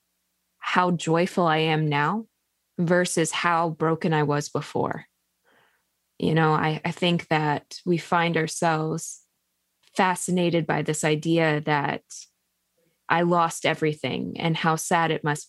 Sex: female